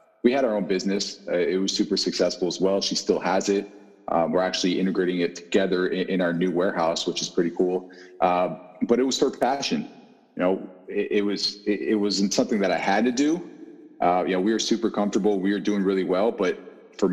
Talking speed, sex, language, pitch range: 230 wpm, male, English, 90-105 Hz